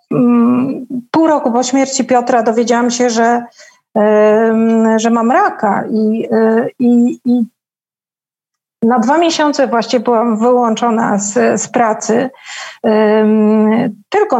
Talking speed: 100 wpm